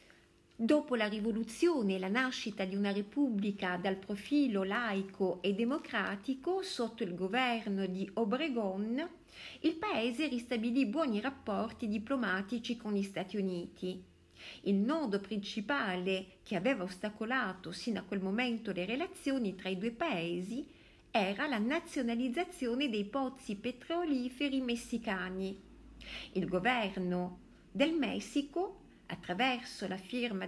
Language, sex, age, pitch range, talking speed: Italian, female, 50-69, 190-270 Hz, 115 wpm